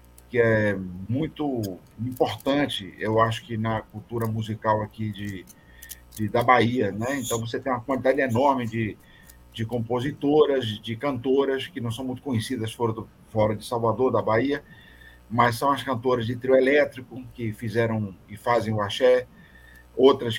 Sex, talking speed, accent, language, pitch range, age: male, 145 wpm, Brazilian, Portuguese, 110-140 Hz, 50-69